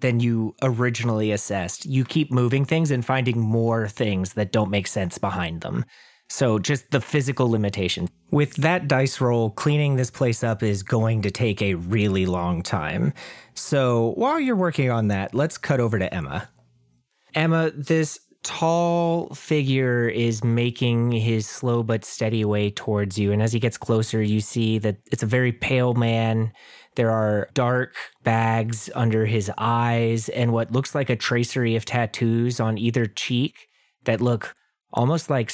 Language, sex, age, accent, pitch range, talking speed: English, male, 30-49, American, 110-125 Hz, 165 wpm